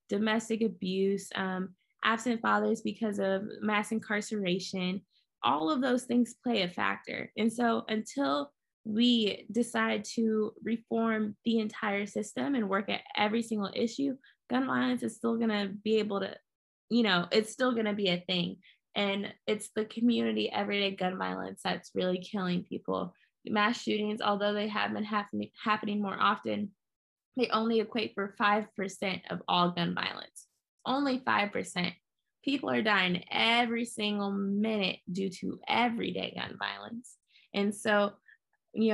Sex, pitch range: female, 185-220 Hz